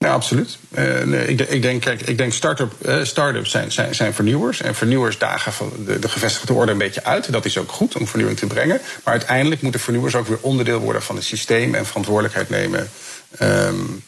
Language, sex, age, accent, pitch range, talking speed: Dutch, male, 50-69, Dutch, 105-125 Hz, 215 wpm